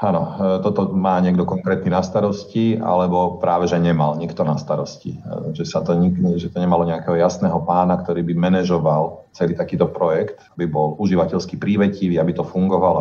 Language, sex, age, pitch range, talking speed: Slovak, male, 40-59, 85-95 Hz, 170 wpm